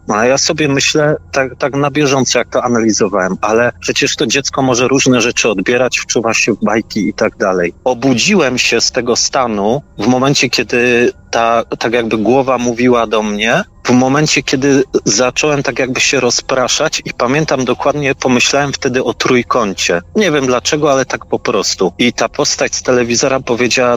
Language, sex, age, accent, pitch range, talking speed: Polish, male, 30-49, native, 120-145 Hz, 175 wpm